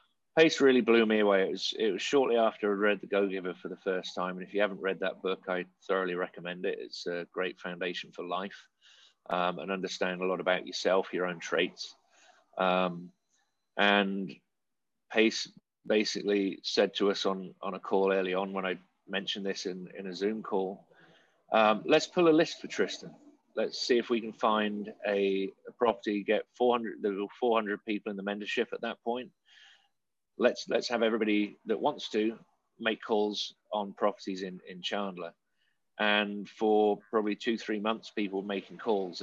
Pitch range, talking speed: 95-110 Hz, 185 wpm